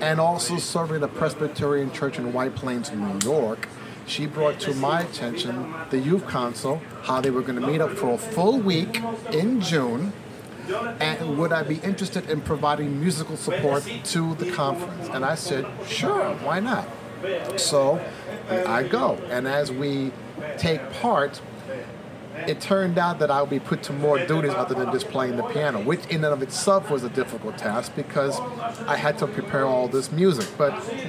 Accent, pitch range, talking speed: American, 135-175 Hz, 180 wpm